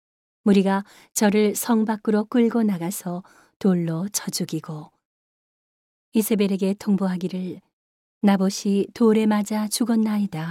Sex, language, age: female, Korean, 40-59